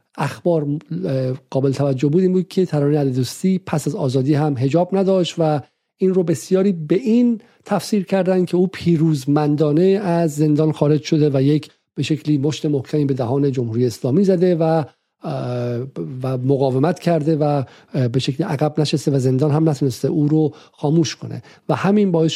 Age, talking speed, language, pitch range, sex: 50-69, 160 wpm, Persian, 135-170 Hz, male